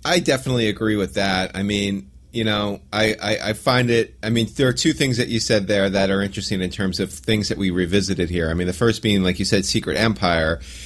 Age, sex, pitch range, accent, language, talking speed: 30-49, male, 90-115 Hz, American, English, 250 wpm